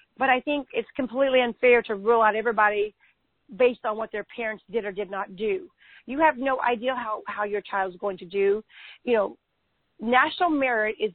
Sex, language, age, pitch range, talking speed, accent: female, English, 40-59, 215-270 Hz, 195 wpm, American